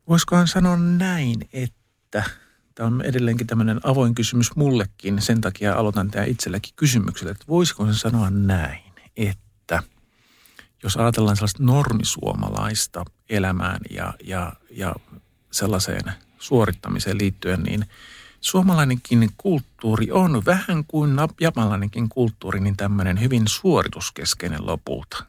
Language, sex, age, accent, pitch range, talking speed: Finnish, male, 50-69, native, 100-125 Hz, 110 wpm